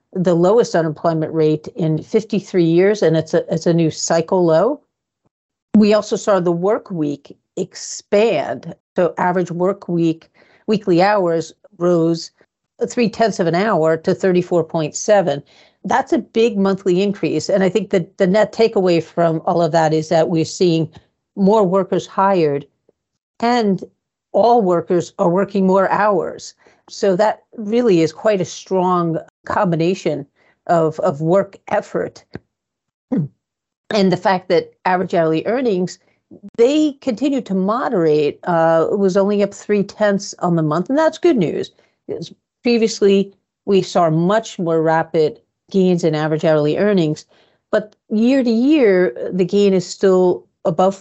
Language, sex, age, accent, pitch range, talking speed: English, female, 50-69, American, 165-210 Hz, 145 wpm